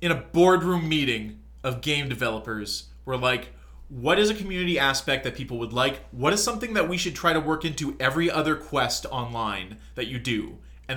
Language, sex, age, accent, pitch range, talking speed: English, male, 20-39, American, 125-165 Hz, 195 wpm